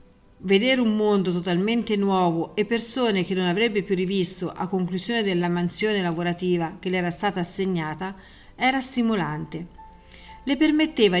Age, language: 40-59, Italian